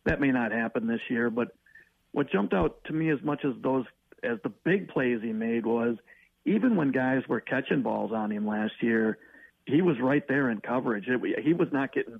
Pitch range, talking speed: 115-145 Hz, 215 wpm